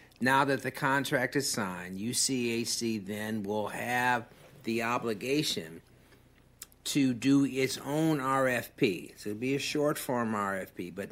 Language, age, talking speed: English, 60-79, 135 wpm